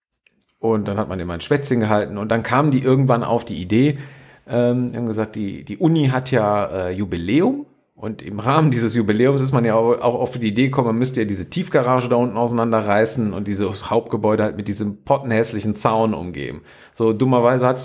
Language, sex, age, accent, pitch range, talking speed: German, male, 40-59, German, 110-140 Hz, 205 wpm